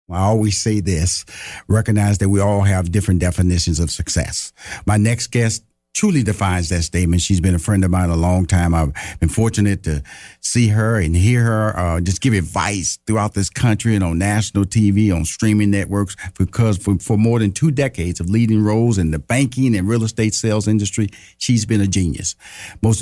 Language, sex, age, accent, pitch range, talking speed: English, male, 50-69, American, 95-120 Hz, 195 wpm